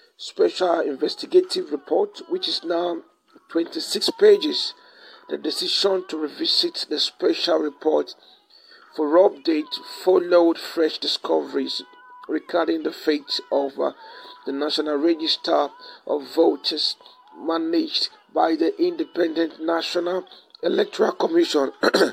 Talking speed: 100 wpm